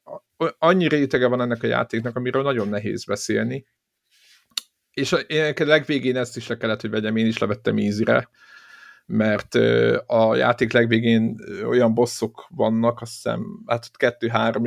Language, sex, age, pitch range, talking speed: Hungarian, male, 50-69, 115-135 Hz, 140 wpm